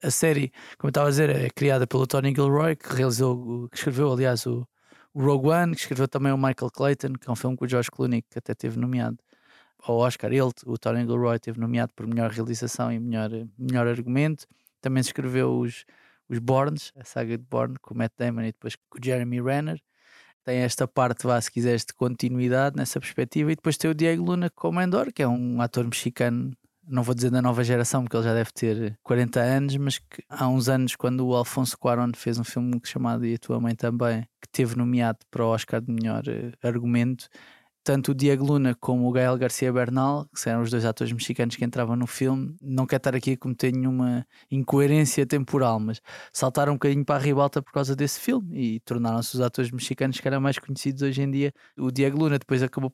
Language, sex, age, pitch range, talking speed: Portuguese, male, 20-39, 120-140 Hz, 220 wpm